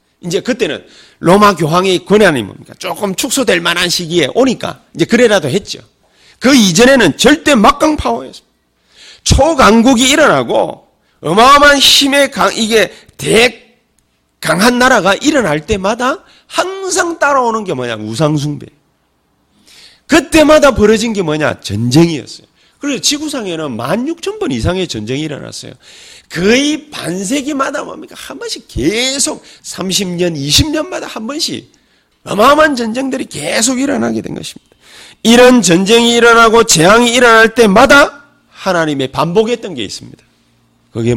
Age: 40-59